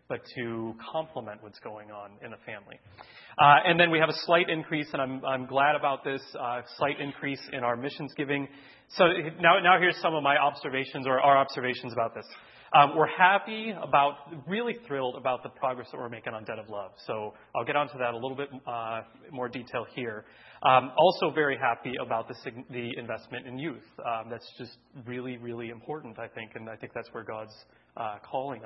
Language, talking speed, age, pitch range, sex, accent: English, 210 wpm, 30-49, 120-145 Hz, male, American